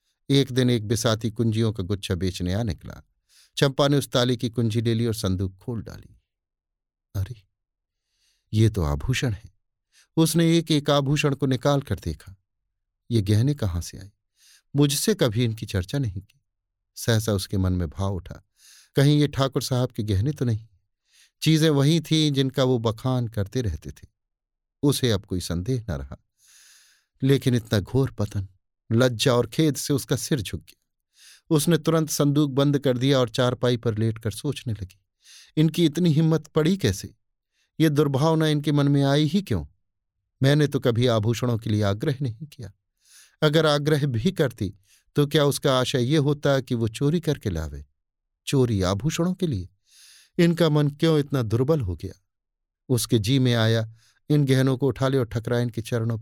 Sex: male